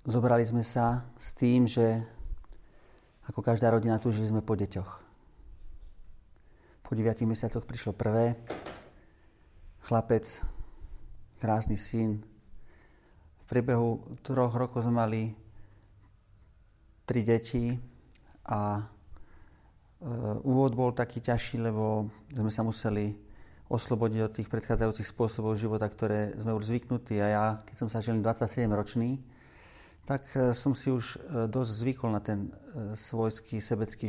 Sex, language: male, Slovak